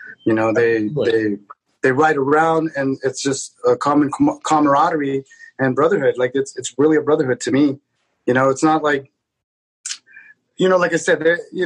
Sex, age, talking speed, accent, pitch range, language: male, 30-49, 175 wpm, American, 130-160 Hz, English